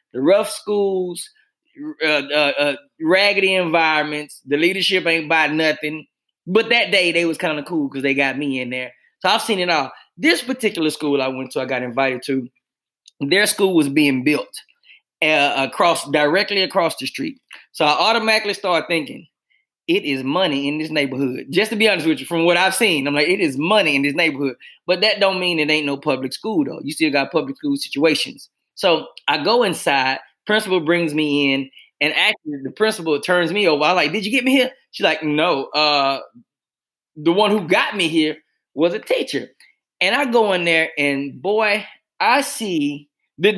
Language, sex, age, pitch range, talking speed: English, male, 20-39, 145-215 Hz, 195 wpm